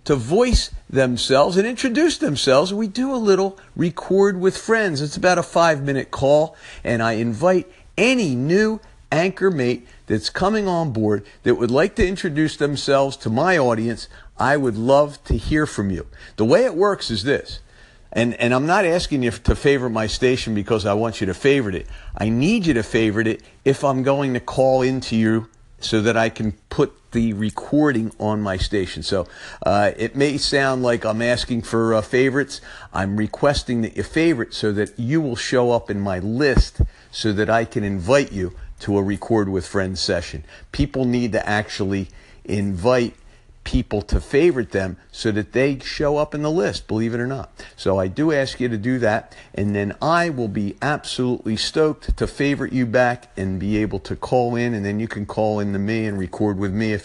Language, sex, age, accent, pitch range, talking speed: English, male, 50-69, American, 105-140 Hz, 195 wpm